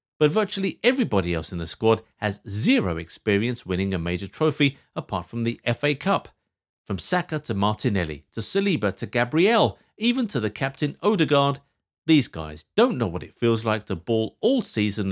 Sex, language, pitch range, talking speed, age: male, English, 95-155 Hz, 175 wpm, 50-69